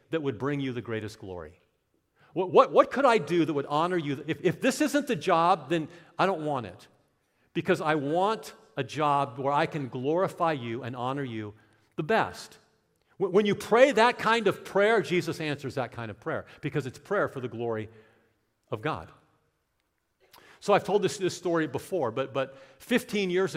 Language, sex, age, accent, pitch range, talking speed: English, male, 50-69, American, 130-170 Hz, 190 wpm